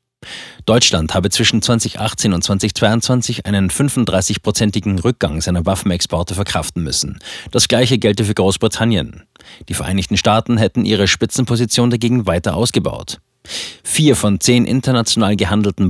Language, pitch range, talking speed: German, 95-115 Hz, 120 wpm